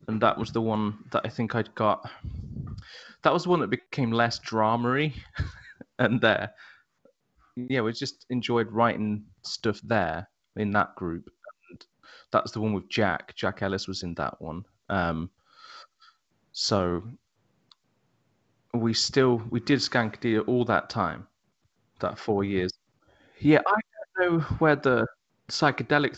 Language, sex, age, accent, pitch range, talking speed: English, male, 20-39, British, 100-125 Hz, 140 wpm